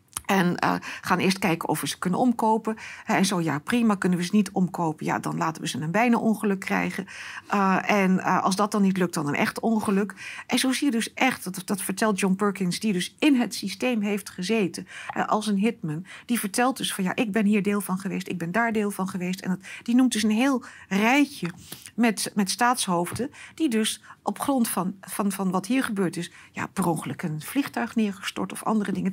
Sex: female